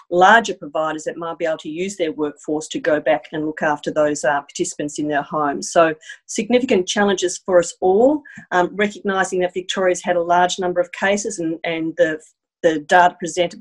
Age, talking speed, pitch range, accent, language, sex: 40-59, 195 wpm, 170-200 Hz, Australian, English, female